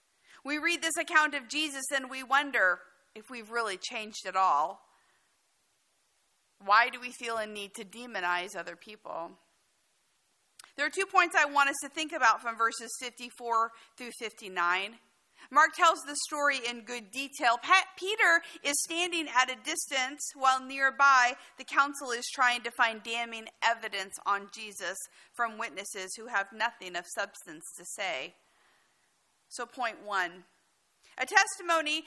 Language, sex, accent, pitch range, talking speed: English, female, American, 225-310 Hz, 150 wpm